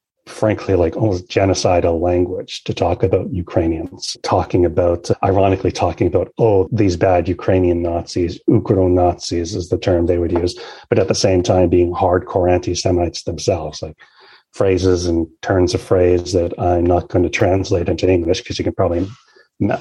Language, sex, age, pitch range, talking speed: English, male, 40-59, 85-95 Hz, 170 wpm